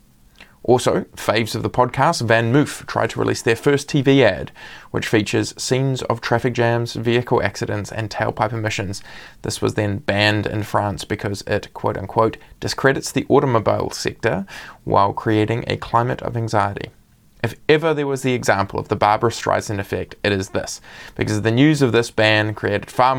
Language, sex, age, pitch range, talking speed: English, male, 20-39, 105-130 Hz, 175 wpm